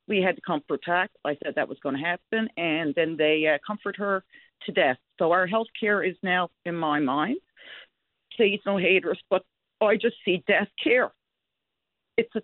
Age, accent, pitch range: 50-69, American, 210-290 Hz